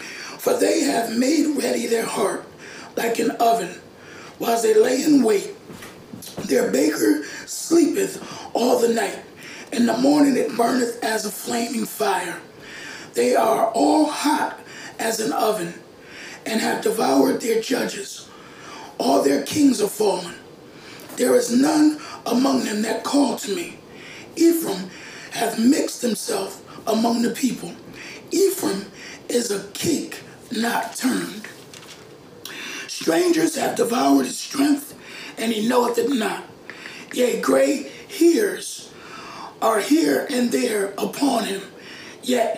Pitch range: 225-300 Hz